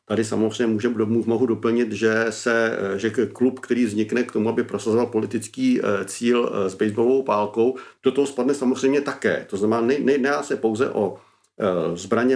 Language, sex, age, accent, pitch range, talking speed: Czech, male, 50-69, native, 110-130 Hz, 165 wpm